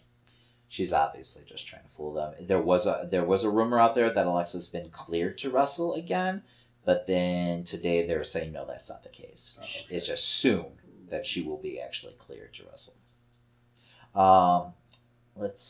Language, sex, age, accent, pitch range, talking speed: English, male, 30-49, American, 90-130 Hz, 175 wpm